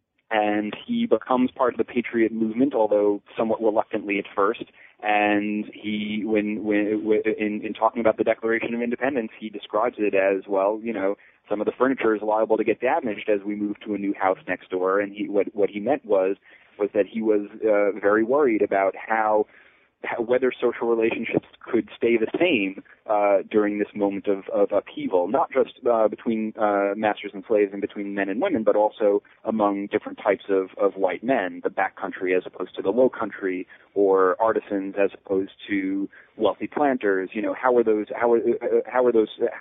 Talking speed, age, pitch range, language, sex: 195 wpm, 30-49, 100-115 Hz, English, male